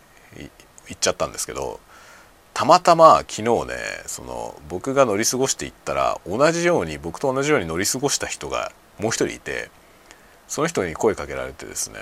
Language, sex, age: Japanese, male, 40-59